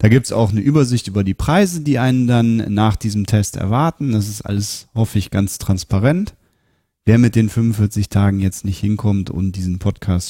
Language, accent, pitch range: German, German, 100-120 Hz